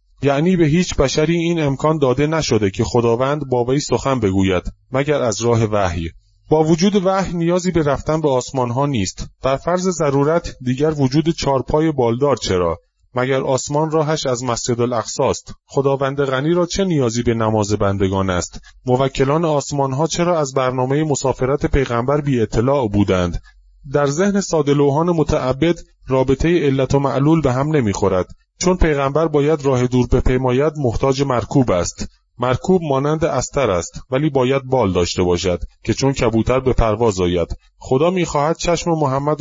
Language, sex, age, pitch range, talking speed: Persian, male, 30-49, 115-150 Hz, 155 wpm